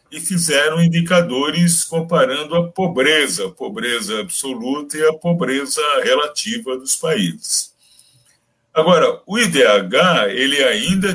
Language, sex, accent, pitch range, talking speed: Portuguese, male, Brazilian, 145-200 Hz, 100 wpm